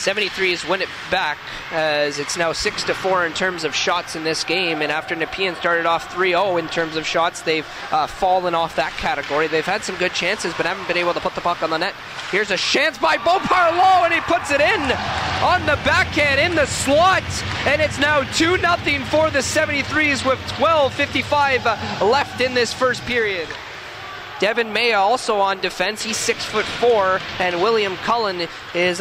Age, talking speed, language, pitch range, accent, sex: 20-39, 190 wpm, English, 175-275 Hz, American, male